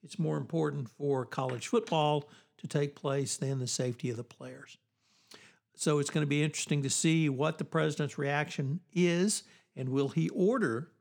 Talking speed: 175 wpm